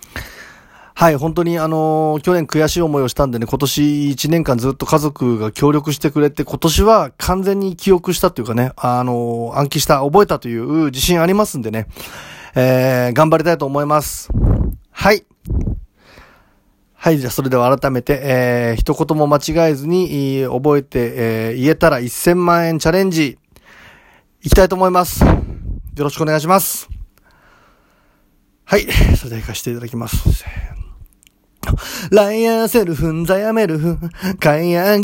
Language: Japanese